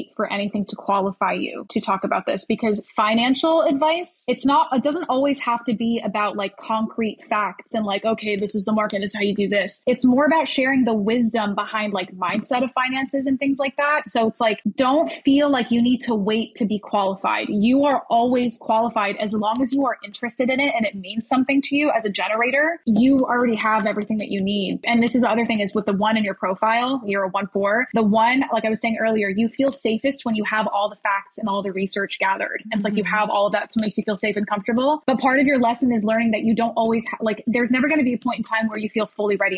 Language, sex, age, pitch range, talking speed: English, female, 10-29, 210-250 Hz, 260 wpm